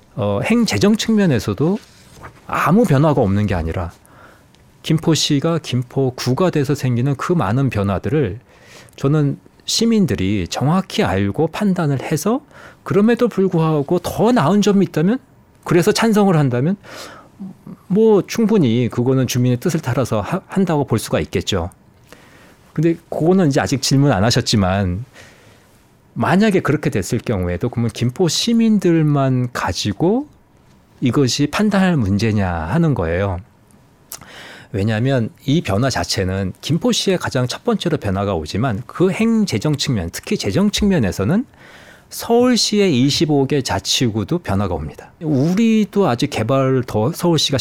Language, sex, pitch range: Korean, male, 115-180 Hz